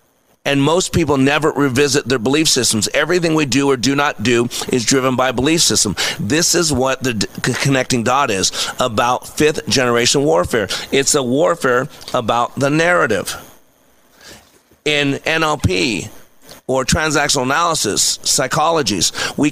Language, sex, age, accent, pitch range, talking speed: English, male, 40-59, American, 130-155 Hz, 135 wpm